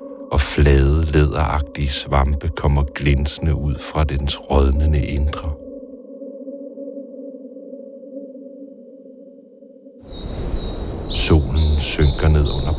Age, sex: 60-79, male